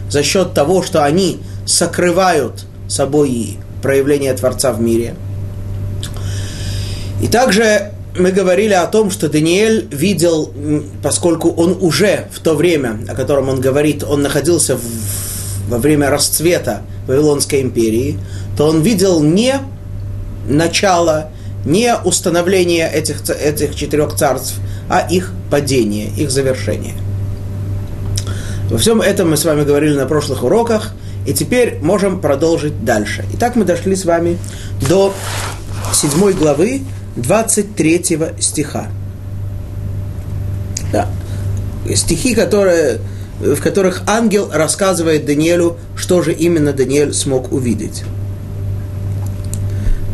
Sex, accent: male, native